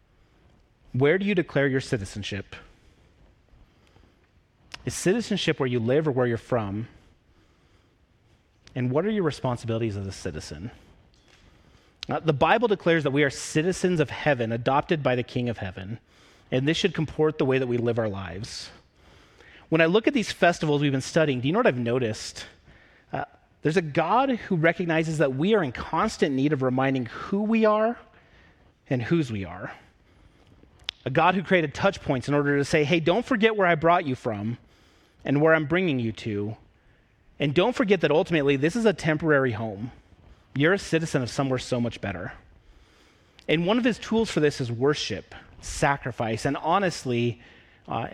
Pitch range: 115-160 Hz